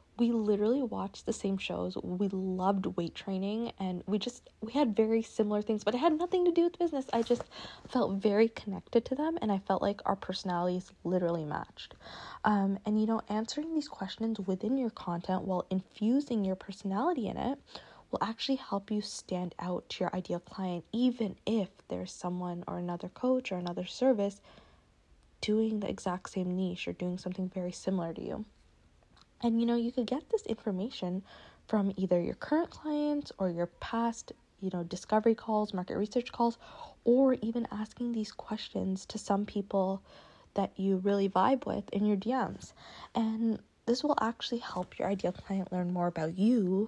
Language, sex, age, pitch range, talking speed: English, female, 20-39, 185-235 Hz, 180 wpm